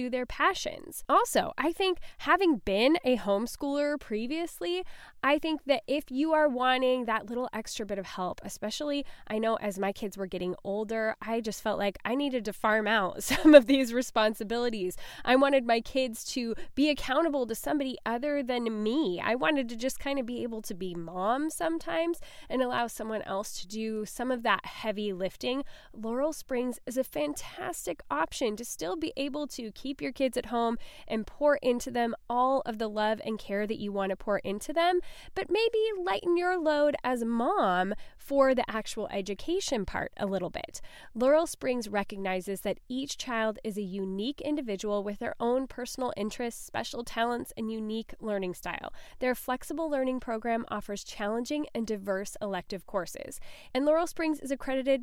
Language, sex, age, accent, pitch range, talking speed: English, female, 10-29, American, 215-285 Hz, 180 wpm